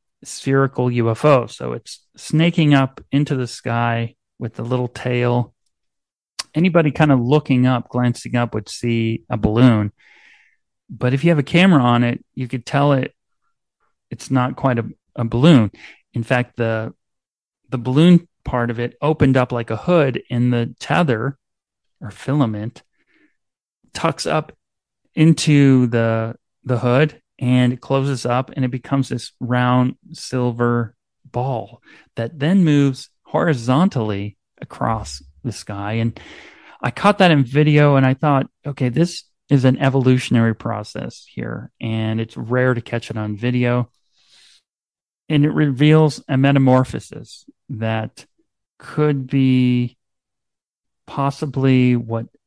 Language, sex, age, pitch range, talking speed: English, male, 30-49, 115-140 Hz, 135 wpm